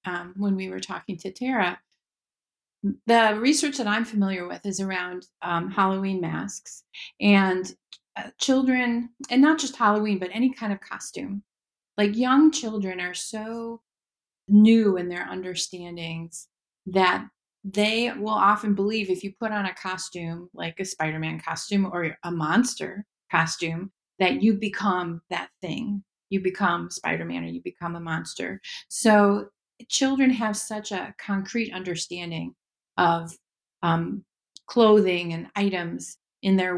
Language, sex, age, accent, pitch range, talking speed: English, female, 30-49, American, 180-215 Hz, 140 wpm